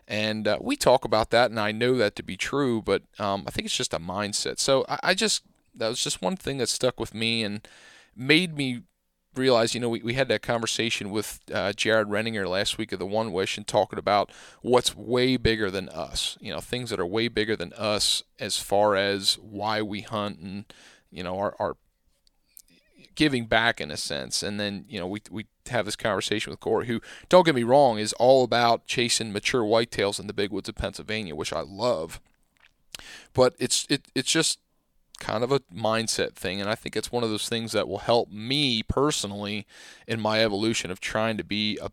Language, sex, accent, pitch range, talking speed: English, male, American, 105-120 Hz, 215 wpm